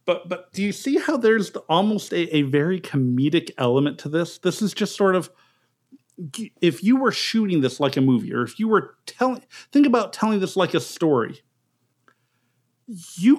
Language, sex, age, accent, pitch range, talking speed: English, male, 50-69, American, 145-230 Hz, 190 wpm